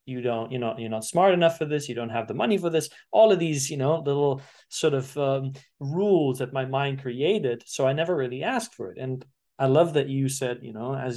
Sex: male